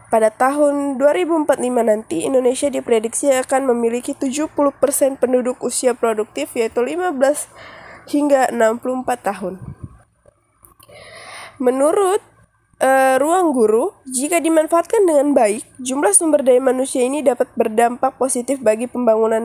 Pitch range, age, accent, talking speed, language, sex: 240-285 Hz, 20-39, native, 110 wpm, Indonesian, female